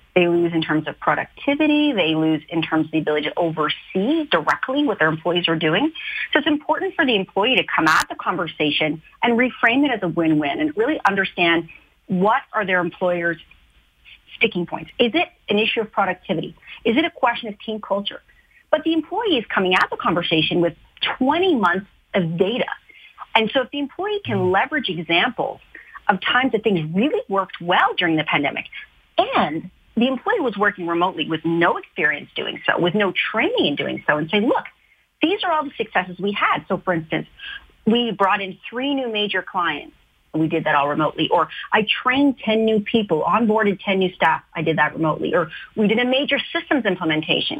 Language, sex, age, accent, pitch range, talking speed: English, female, 40-59, American, 165-270 Hz, 195 wpm